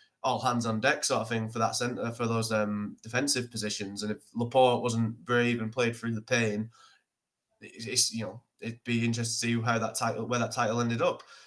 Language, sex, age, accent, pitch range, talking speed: English, male, 20-39, British, 110-125 Hz, 220 wpm